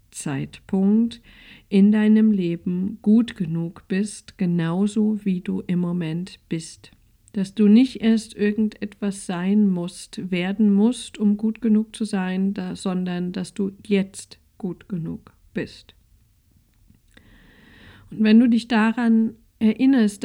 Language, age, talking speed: German, 50-69, 120 wpm